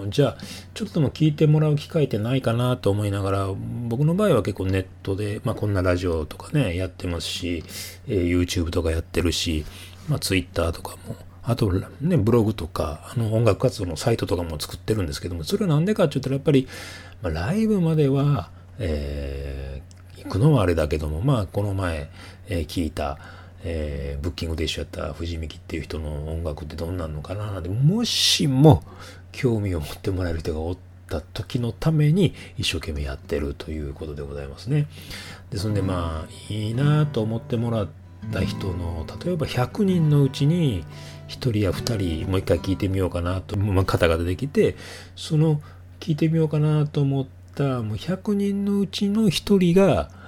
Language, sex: Japanese, male